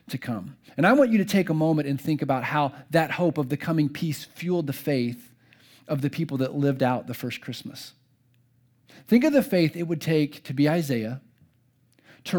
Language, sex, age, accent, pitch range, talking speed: English, male, 40-59, American, 125-155 Hz, 210 wpm